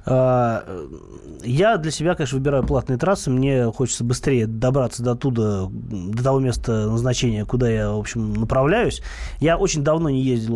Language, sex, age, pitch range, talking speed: Russian, male, 20-39, 115-140 Hz, 155 wpm